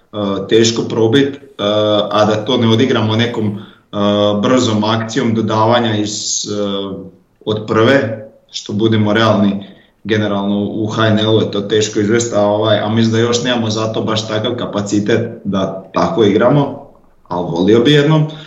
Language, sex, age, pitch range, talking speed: Croatian, male, 30-49, 105-115 Hz, 140 wpm